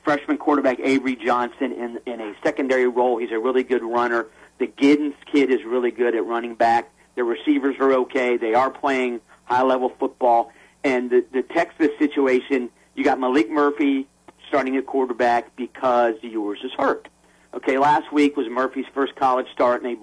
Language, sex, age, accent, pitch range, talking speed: English, male, 40-59, American, 115-140 Hz, 175 wpm